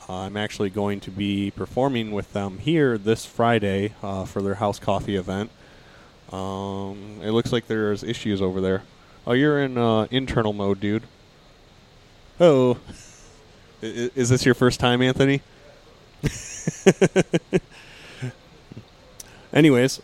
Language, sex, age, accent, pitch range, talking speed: English, male, 20-39, American, 100-125 Hz, 120 wpm